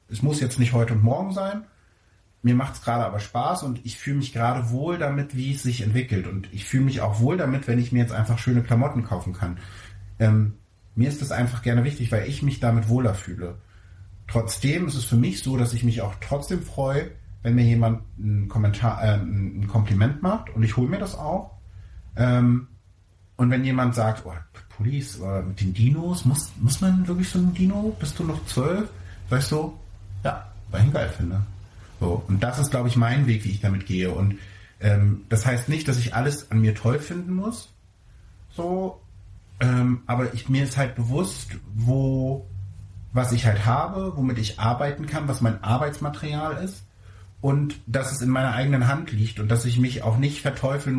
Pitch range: 100-135 Hz